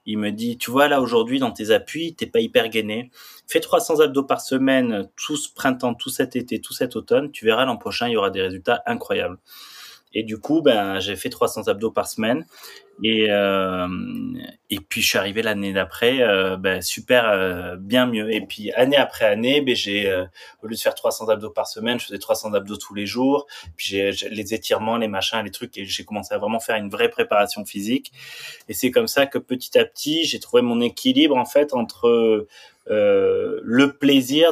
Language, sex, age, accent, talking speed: French, male, 20-39, French, 215 wpm